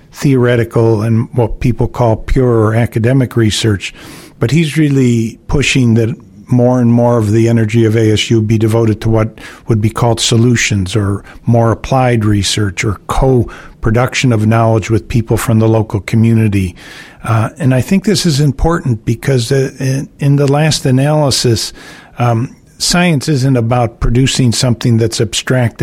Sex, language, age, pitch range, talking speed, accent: male, English, 50-69, 115-130 Hz, 145 wpm, American